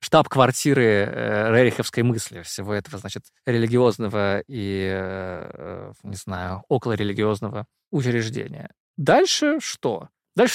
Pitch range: 110-155 Hz